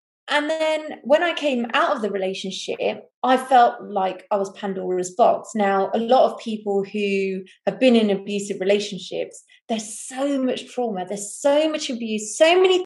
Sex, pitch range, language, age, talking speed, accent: female, 210-295 Hz, English, 30-49, 175 wpm, British